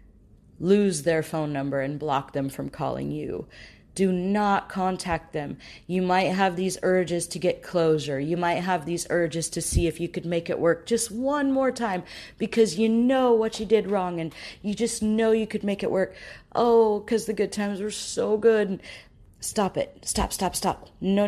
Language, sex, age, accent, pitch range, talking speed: English, female, 40-59, American, 150-200 Hz, 195 wpm